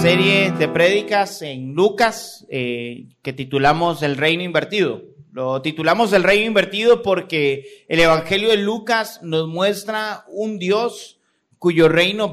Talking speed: 130 wpm